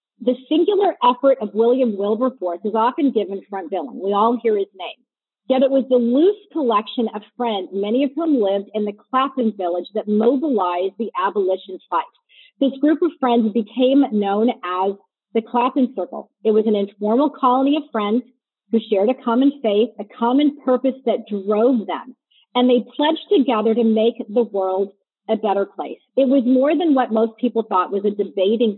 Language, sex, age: English, female, 40-59